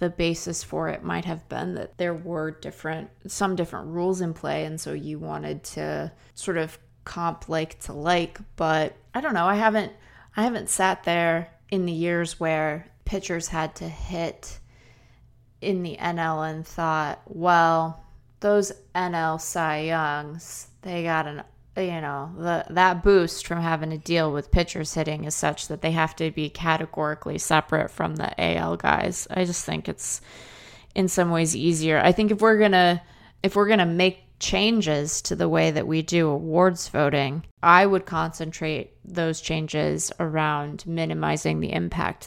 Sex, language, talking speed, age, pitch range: female, English, 170 wpm, 20-39, 150-175 Hz